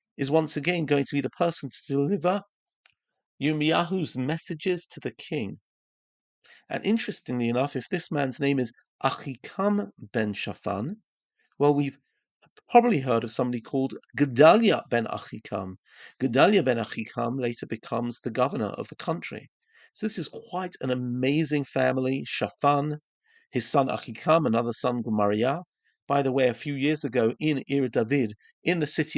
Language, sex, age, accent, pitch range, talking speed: English, male, 40-59, British, 125-165 Hz, 150 wpm